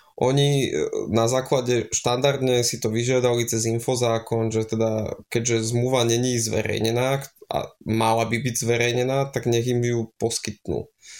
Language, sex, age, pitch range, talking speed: Slovak, male, 20-39, 115-130 Hz, 135 wpm